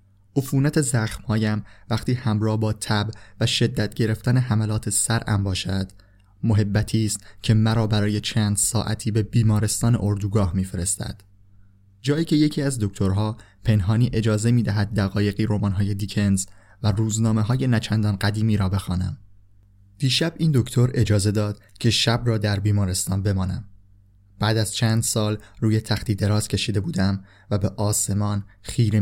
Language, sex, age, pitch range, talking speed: Persian, male, 20-39, 100-110 Hz, 130 wpm